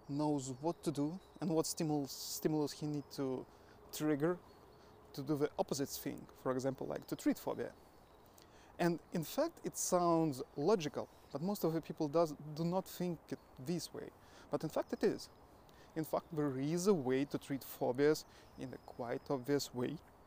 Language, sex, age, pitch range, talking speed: English, male, 20-39, 135-165 Hz, 180 wpm